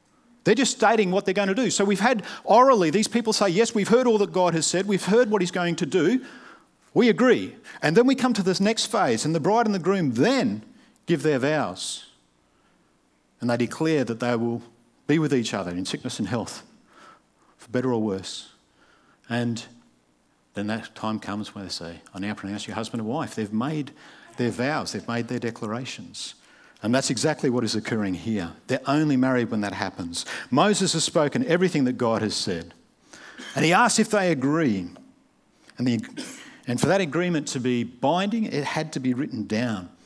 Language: English